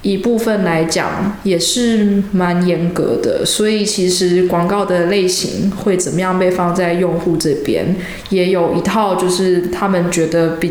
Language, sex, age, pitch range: Chinese, female, 20-39, 175-210 Hz